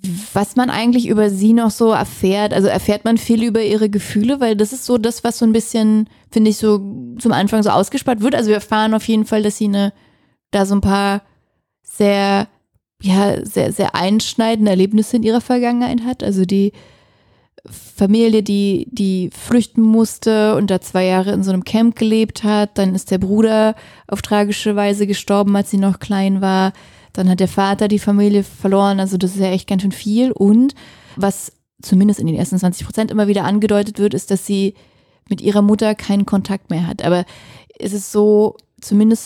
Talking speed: 195 wpm